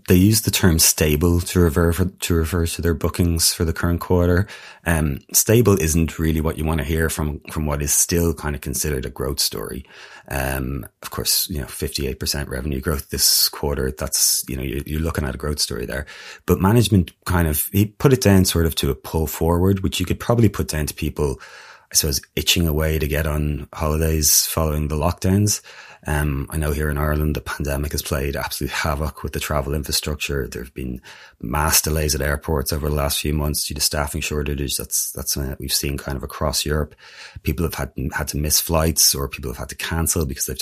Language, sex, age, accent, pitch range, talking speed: English, male, 30-49, Irish, 75-85 Hz, 225 wpm